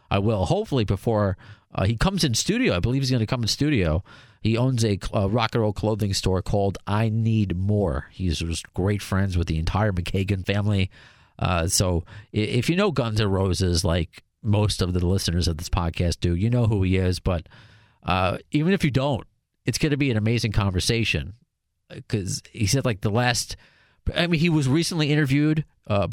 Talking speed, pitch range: 195 wpm, 95-120 Hz